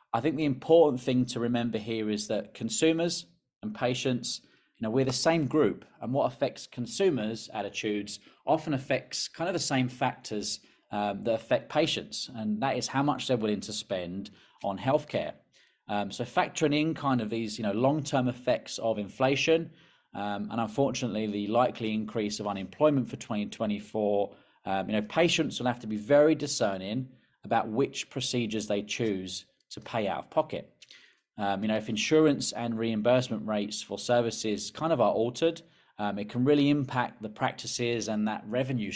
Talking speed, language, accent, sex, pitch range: 175 wpm, English, British, male, 105-135 Hz